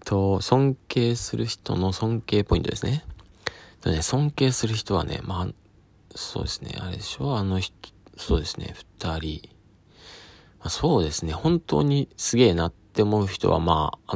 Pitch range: 85-115 Hz